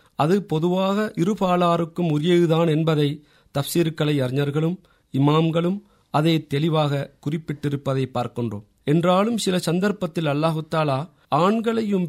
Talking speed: 85 wpm